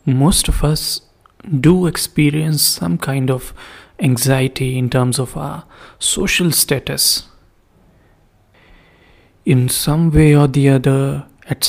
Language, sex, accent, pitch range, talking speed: English, male, Indian, 120-150 Hz, 115 wpm